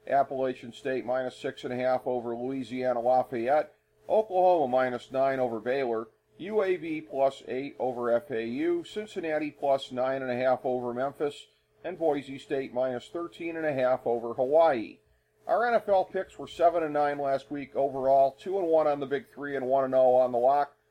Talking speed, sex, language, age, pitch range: 140 wpm, male, English, 40-59, 130-150 Hz